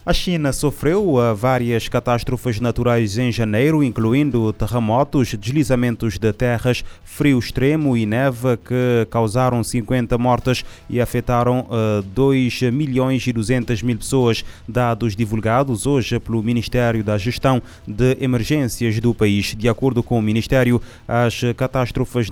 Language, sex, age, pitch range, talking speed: Portuguese, male, 20-39, 115-130 Hz, 130 wpm